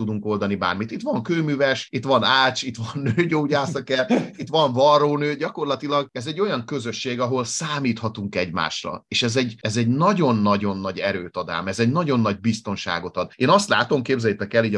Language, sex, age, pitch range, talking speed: Hungarian, male, 30-49, 105-140 Hz, 180 wpm